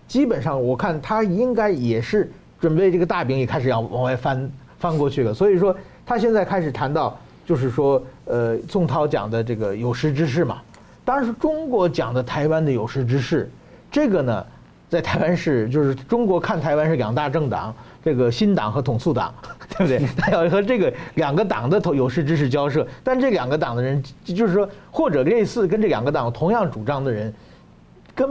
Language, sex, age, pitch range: Chinese, male, 50-69, 130-195 Hz